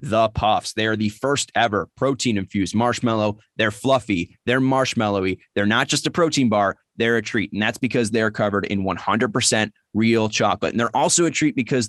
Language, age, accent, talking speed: English, 30-49, American, 190 wpm